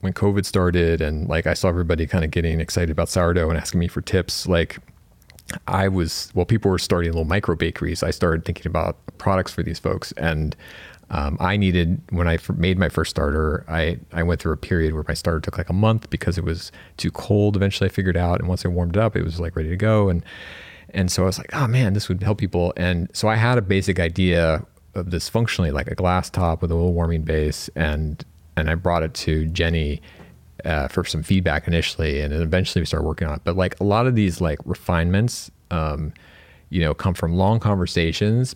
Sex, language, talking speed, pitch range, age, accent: male, English, 230 wpm, 80-95 Hz, 30-49, American